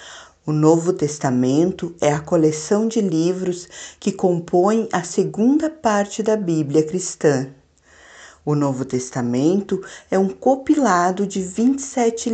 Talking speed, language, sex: 115 wpm, Portuguese, female